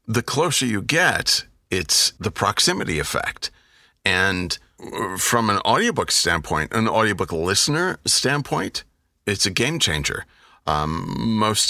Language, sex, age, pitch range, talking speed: English, male, 40-59, 80-100 Hz, 120 wpm